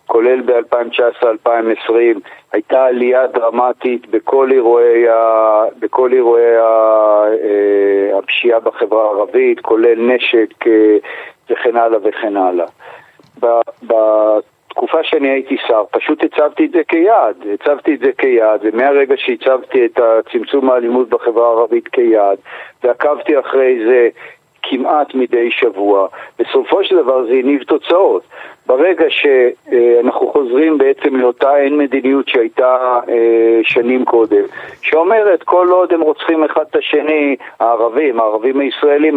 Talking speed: 110 wpm